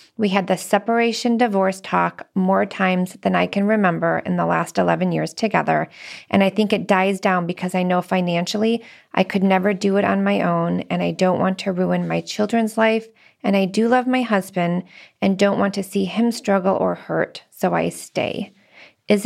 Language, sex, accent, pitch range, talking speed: English, female, American, 175-205 Hz, 200 wpm